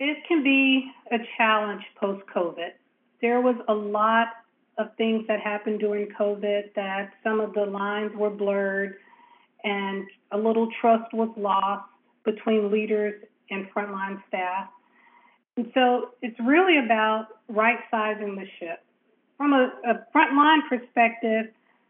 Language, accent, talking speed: English, American, 130 wpm